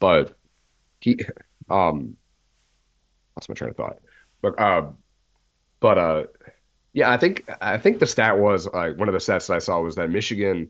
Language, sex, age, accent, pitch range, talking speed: English, male, 30-49, American, 80-100 Hz, 180 wpm